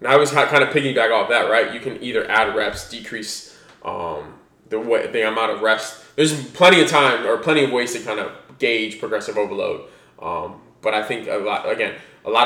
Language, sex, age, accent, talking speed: English, male, 20-39, American, 215 wpm